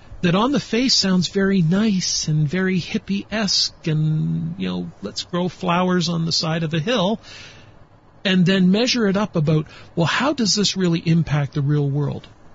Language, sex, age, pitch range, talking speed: English, male, 40-59, 135-185 Hz, 175 wpm